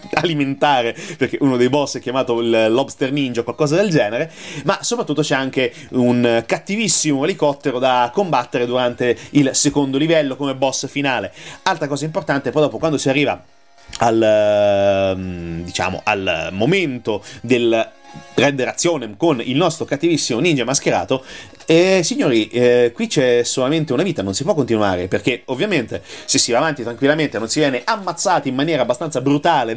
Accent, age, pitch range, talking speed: native, 30-49, 115-155 Hz, 160 wpm